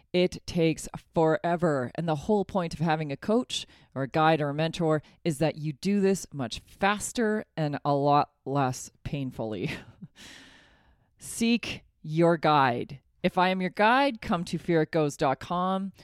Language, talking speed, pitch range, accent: English, 150 wpm, 155-205 Hz, American